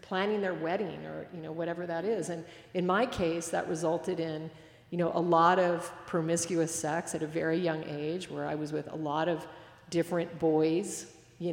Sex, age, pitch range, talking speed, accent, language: female, 50-69, 160-185 Hz, 200 wpm, American, English